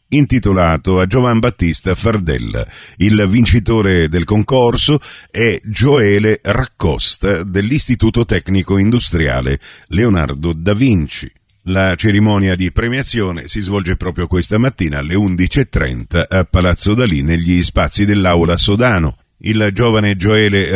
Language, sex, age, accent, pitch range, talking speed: Italian, male, 50-69, native, 90-110 Hz, 115 wpm